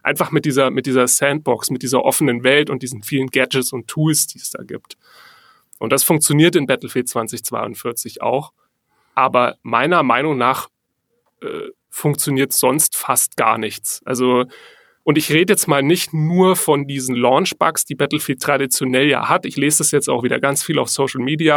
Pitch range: 130-160 Hz